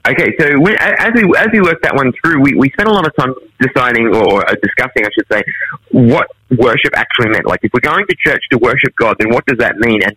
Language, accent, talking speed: English, Australian, 255 wpm